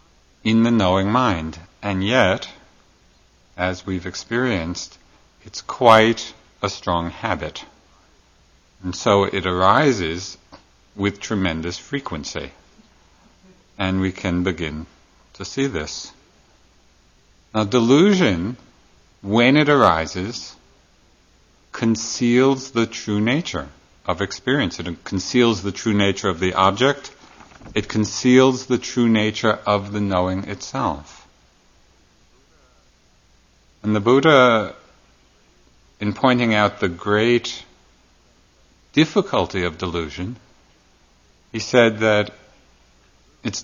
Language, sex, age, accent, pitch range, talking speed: English, male, 50-69, American, 90-115 Hz, 100 wpm